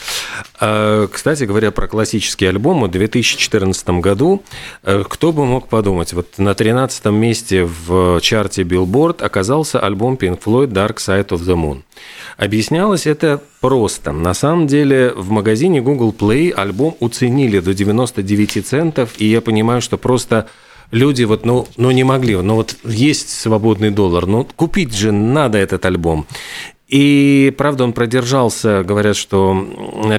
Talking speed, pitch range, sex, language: 145 wpm, 95-125 Hz, male, Russian